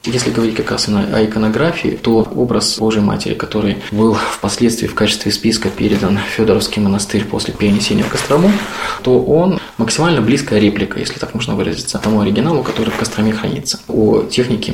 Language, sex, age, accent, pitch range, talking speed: Russian, male, 20-39, native, 105-125 Hz, 165 wpm